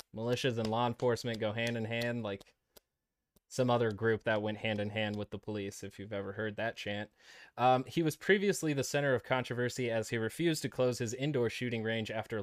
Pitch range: 110-130 Hz